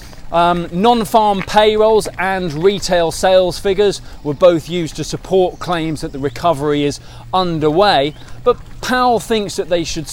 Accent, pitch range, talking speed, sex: British, 140-190 Hz, 140 wpm, male